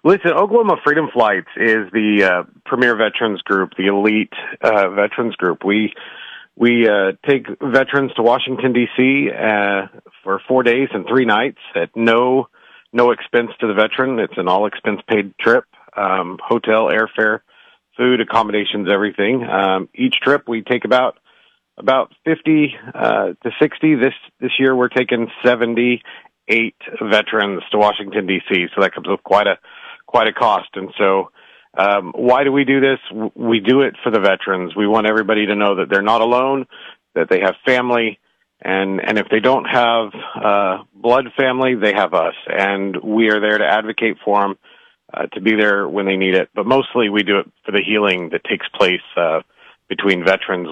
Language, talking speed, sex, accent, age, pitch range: English, 175 wpm, male, American, 40-59, 100-125 Hz